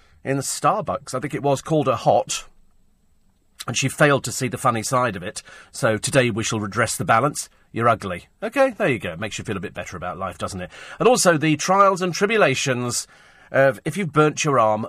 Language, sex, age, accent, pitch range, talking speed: English, male, 40-59, British, 105-150 Hz, 220 wpm